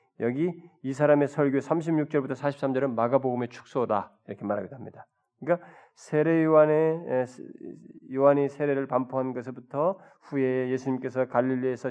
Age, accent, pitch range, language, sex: 20-39, native, 130-160 Hz, Korean, male